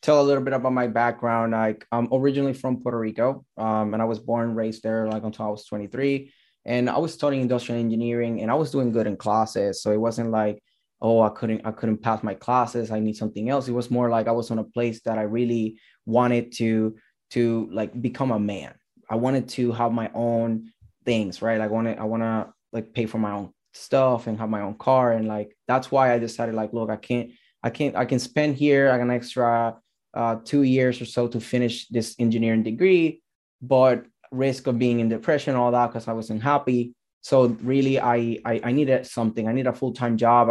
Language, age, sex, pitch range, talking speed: English, 10-29, male, 110-125 Hz, 220 wpm